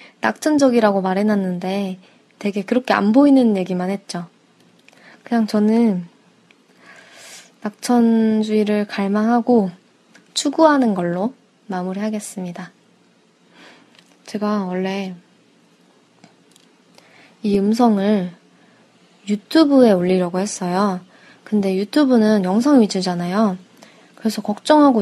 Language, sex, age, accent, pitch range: Korean, female, 20-39, native, 195-245 Hz